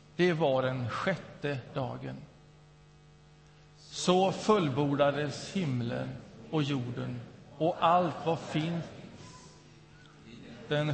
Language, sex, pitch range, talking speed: Swedish, male, 135-155 Hz, 80 wpm